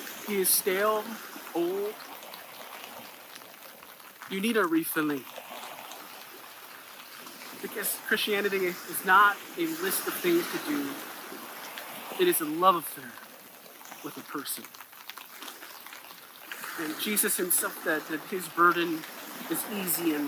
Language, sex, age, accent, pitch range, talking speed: English, male, 40-59, American, 185-280 Hz, 105 wpm